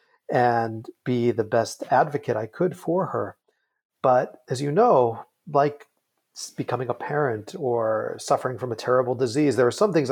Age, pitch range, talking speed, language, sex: 40-59, 110-140 Hz, 160 wpm, English, male